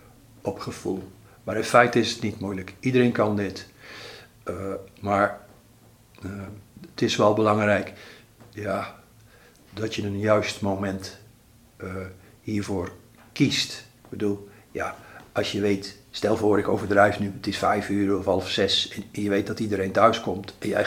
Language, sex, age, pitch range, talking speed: Dutch, male, 50-69, 100-115 Hz, 160 wpm